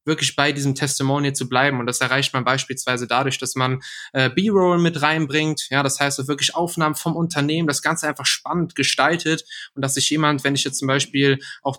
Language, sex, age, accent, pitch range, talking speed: German, male, 20-39, German, 135-155 Hz, 210 wpm